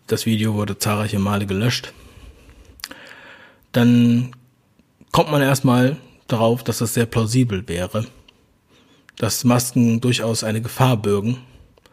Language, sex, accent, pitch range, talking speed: German, male, German, 105-130 Hz, 110 wpm